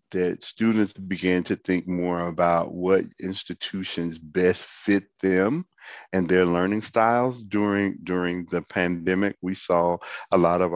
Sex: male